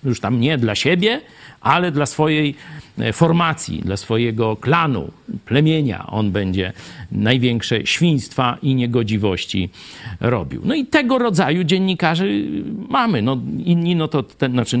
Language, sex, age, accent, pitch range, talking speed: Polish, male, 50-69, native, 110-140 Hz, 120 wpm